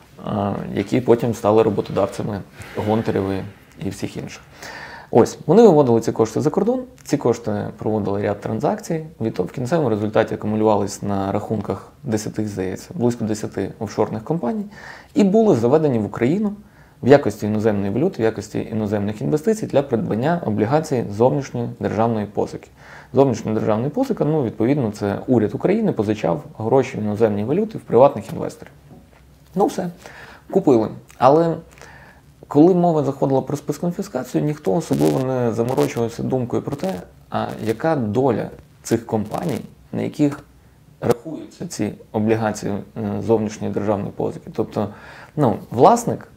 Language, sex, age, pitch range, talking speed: Ukrainian, male, 20-39, 105-145 Hz, 125 wpm